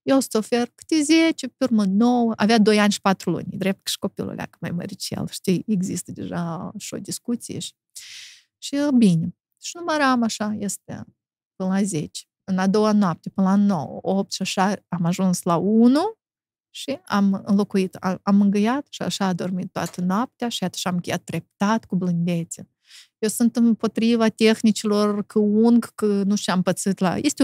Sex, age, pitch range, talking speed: female, 30-49, 195-275 Hz, 185 wpm